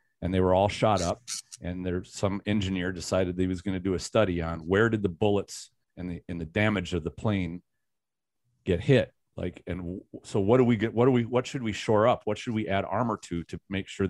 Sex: male